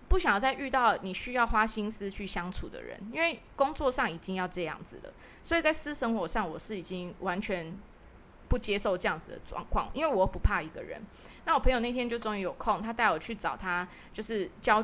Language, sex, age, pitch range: Chinese, female, 20-39, 185-255 Hz